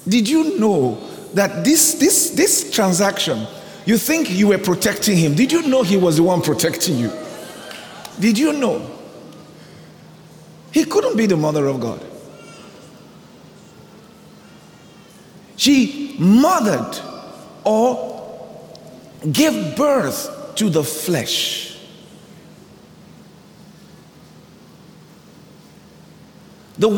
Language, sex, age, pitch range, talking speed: English, male, 50-69, 175-255 Hz, 95 wpm